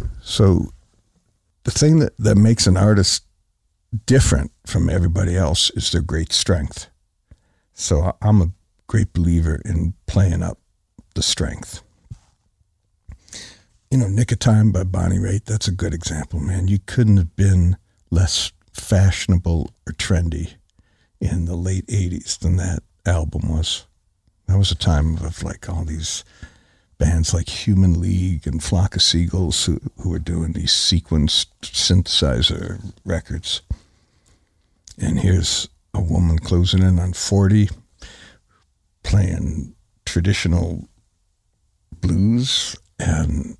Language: English